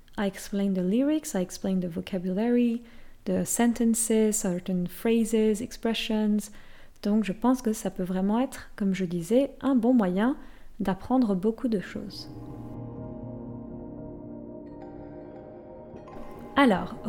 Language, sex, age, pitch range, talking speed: French, female, 20-39, 190-250 Hz, 110 wpm